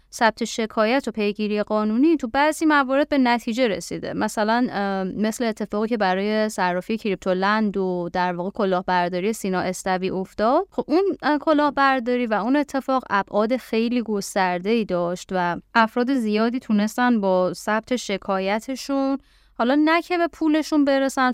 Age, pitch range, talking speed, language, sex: 20-39, 195-250 Hz, 140 wpm, Persian, female